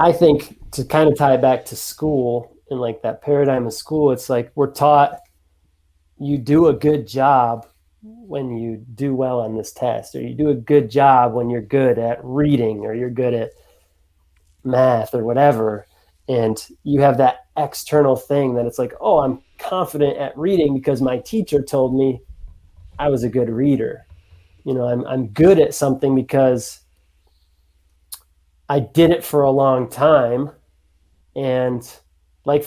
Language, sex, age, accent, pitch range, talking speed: English, male, 30-49, American, 105-145 Hz, 165 wpm